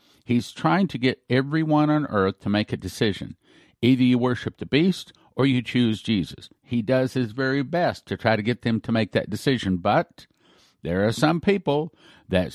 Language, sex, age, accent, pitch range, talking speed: English, male, 50-69, American, 105-130 Hz, 190 wpm